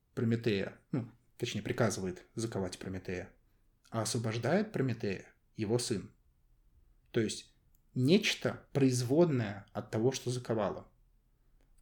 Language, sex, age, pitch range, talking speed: Russian, male, 20-39, 105-130 Hz, 100 wpm